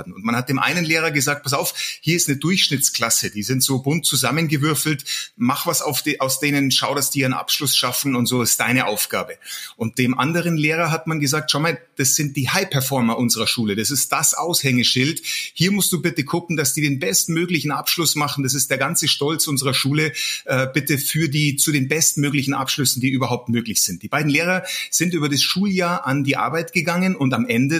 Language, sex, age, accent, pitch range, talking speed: German, male, 30-49, German, 130-155 Hz, 210 wpm